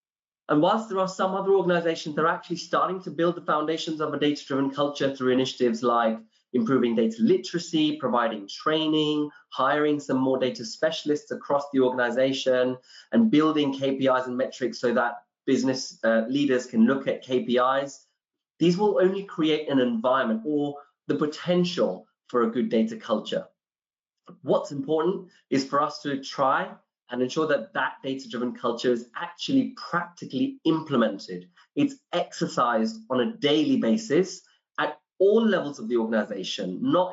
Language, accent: English, British